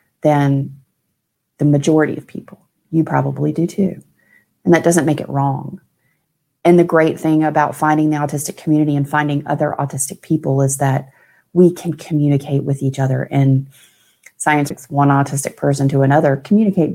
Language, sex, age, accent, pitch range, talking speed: English, female, 30-49, American, 145-180 Hz, 160 wpm